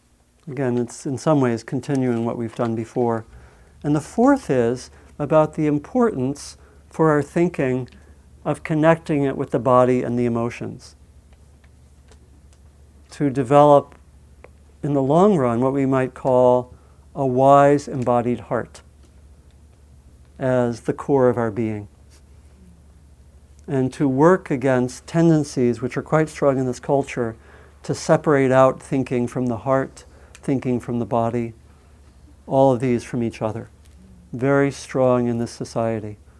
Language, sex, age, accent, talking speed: English, male, 50-69, American, 135 wpm